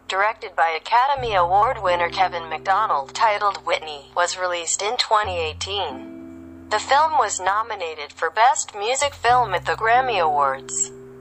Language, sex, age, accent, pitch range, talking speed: English, female, 40-59, American, 160-225 Hz, 135 wpm